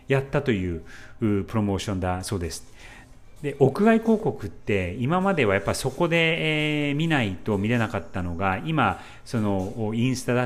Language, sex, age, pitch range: Japanese, male, 40-59, 105-140 Hz